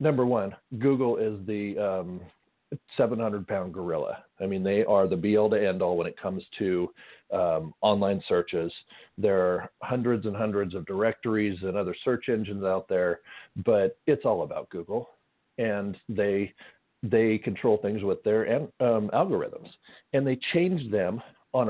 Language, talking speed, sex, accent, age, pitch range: English, 145 wpm, male, American, 40-59, 100-120 Hz